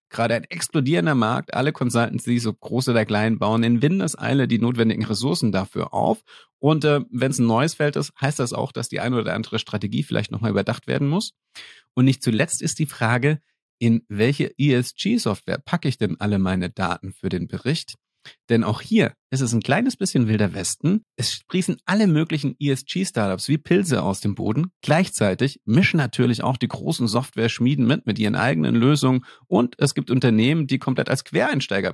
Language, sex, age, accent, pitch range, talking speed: German, male, 40-59, German, 110-150 Hz, 185 wpm